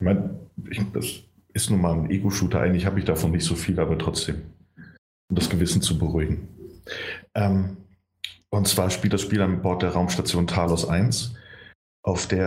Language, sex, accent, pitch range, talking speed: German, male, German, 85-105 Hz, 175 wpm